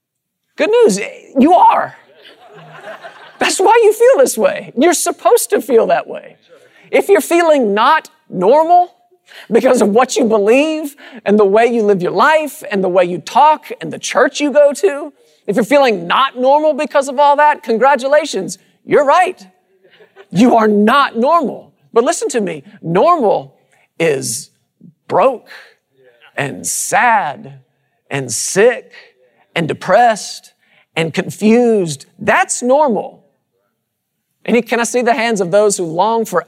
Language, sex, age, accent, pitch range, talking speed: English, male, 40-59, American, 195-295 Hz, 145 wpm